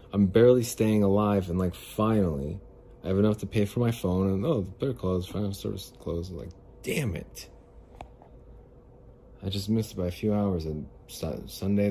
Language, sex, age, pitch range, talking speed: English, male, 30-49, 85-105 Hz, 185 wpm